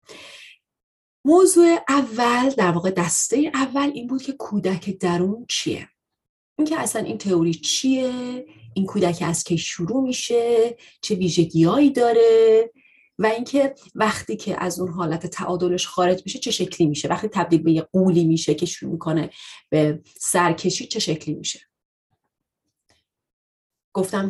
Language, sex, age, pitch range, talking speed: Persian, female, 30-49, 170-220 Hz, 135 wpm